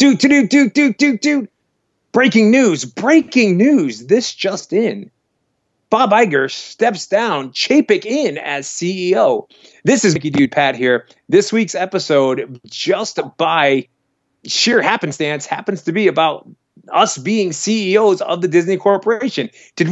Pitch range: 140-205 Hz